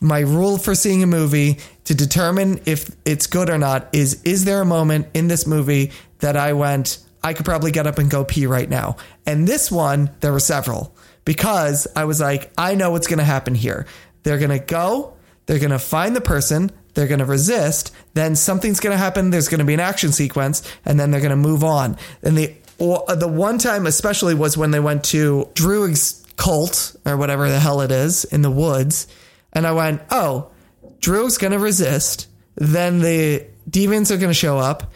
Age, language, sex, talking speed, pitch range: 30-49, English, male, 210 wpm, 145-185 Hz